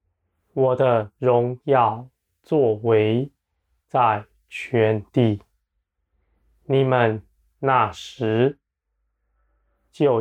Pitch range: 80-125 Hz